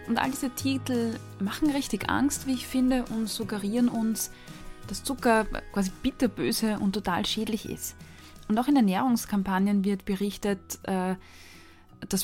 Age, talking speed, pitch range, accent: 20-39, 135 wpm, 200-245 Hz, German